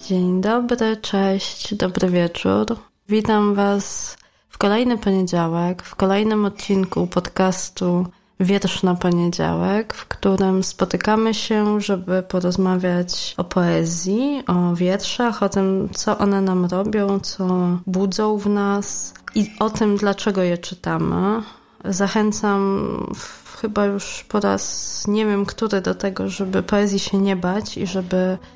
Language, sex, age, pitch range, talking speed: Polish, female, 20-39, 185-215 Hz, 125 wpm